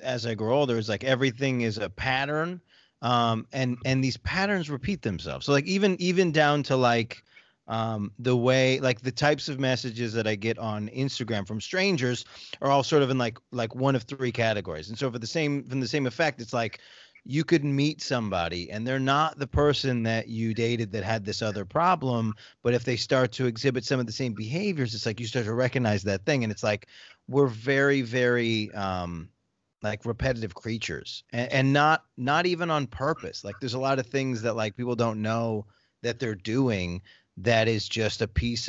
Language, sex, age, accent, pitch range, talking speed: English, male, 30-49, American, 105-135 Hz, 205 wpm